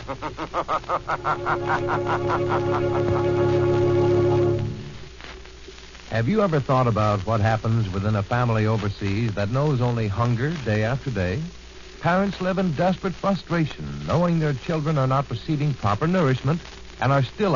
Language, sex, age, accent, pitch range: English, male, 60-79, American, 100-160 Hz